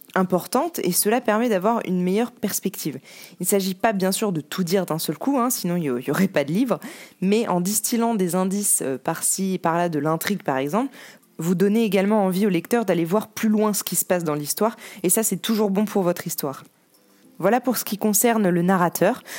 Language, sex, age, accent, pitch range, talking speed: French, female, 20-39, French, 165-210 Hz, 220 wpm